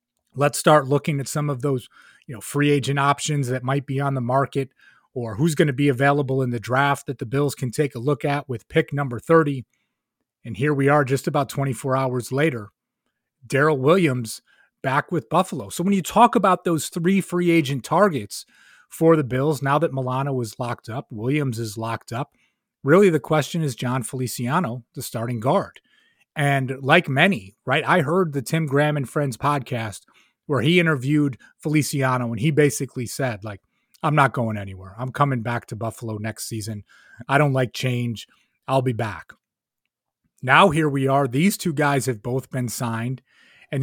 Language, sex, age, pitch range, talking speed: English, male, 30-49, 125-150 Hz, 185 wpm